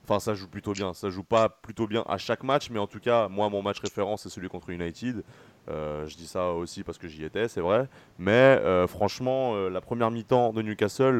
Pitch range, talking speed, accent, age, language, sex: 95-120 Hz, 240 wpm, French, 20-39, French, male